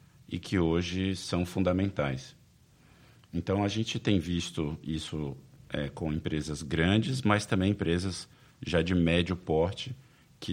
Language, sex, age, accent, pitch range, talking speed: Portuguese, male, 50-69, Brazilian, 80-100 Hz, 130 wpm